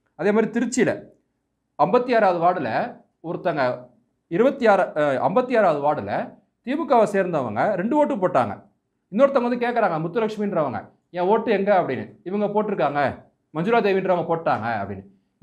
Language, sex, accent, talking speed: Tamil, male, native, 120 wpm